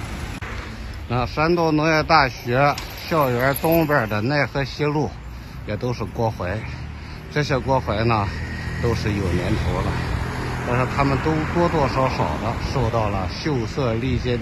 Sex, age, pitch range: male, 60-79, 85-120 Hz